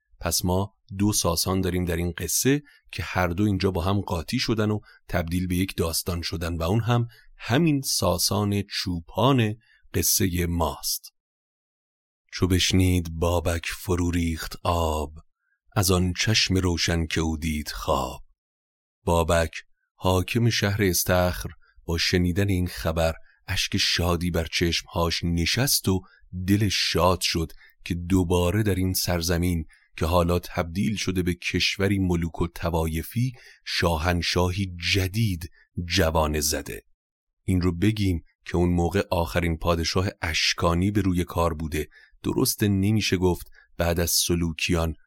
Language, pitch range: Persian, 85-95 Hz